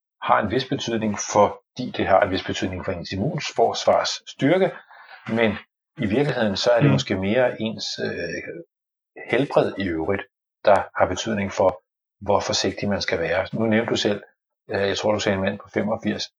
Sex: male